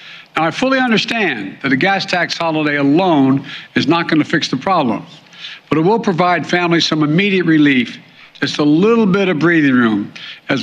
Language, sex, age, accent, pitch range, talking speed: English, male, 60-79, American, 145-175 Hz, 185 wpm